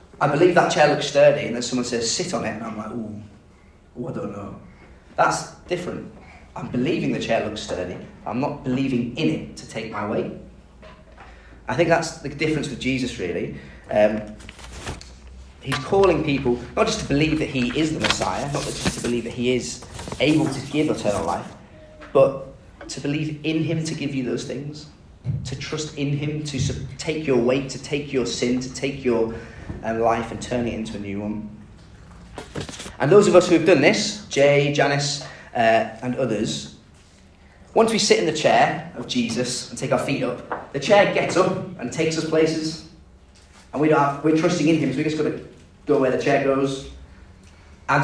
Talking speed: 195 wpm